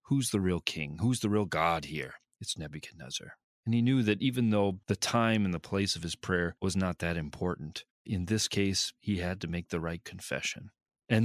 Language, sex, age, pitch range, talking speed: English, male, 30-49, 85-115 Hz, 215 wpm